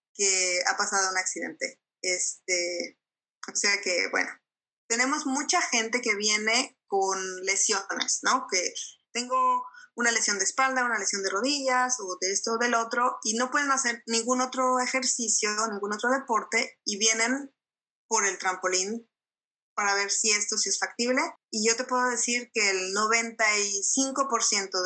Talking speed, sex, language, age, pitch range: 150 wpm, female, Polish, 20-39, 200-250 Hz